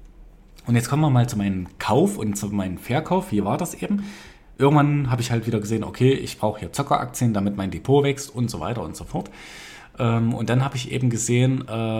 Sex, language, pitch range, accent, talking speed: male, German, 100-125 Hz, German, 215 wpm